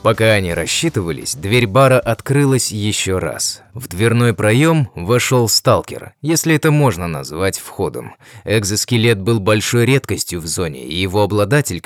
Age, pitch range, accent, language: 20-39, 105-130 Hz, native, Russian